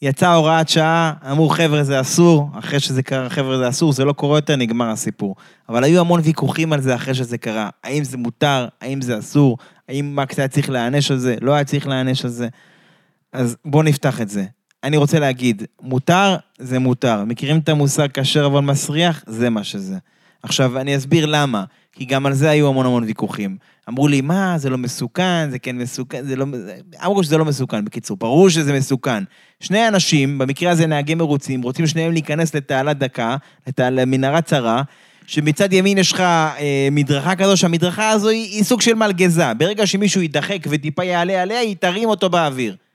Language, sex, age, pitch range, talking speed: Hebrew, male, 20-39, 130-180 Hz, 185 wpm